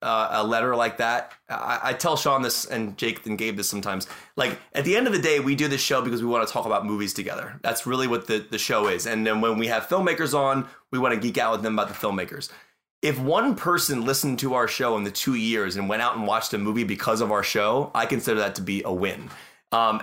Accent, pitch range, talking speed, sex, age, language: American, 115-145 Hz, 265 wpm, male, 30-49, English